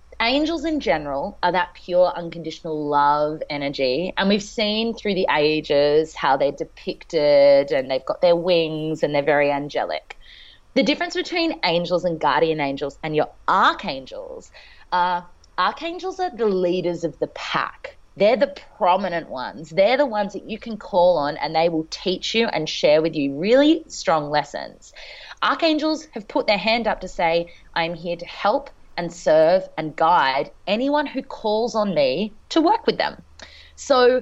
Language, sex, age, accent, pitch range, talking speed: English, female, 20-39, Australian, 165-265 Hz, 170 wpm